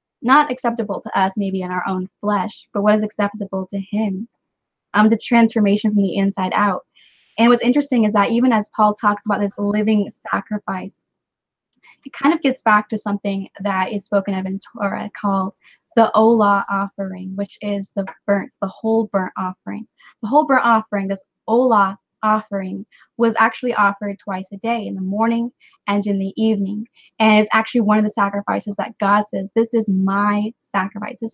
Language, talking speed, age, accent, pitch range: English, 180 wpm, 20-39, American, 200-225 Hz